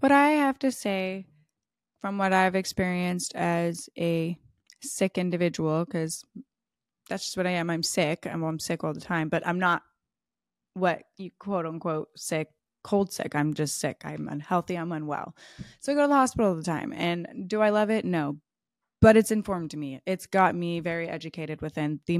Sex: female